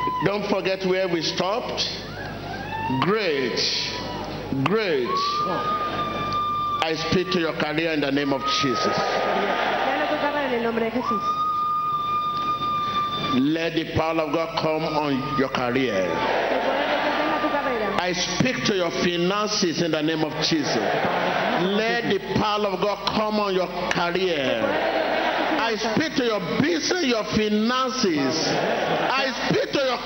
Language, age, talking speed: English, 50-69, 110 wpm